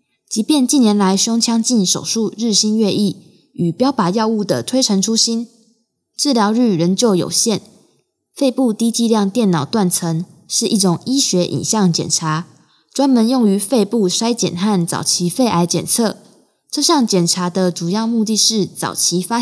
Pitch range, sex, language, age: 180-235 Hz, female, Chinese, 20-39